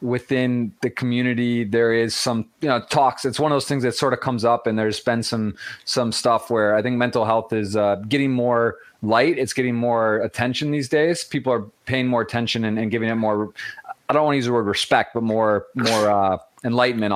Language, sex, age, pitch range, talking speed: English, male, 20-39, 110-140 Hz, 225 wpm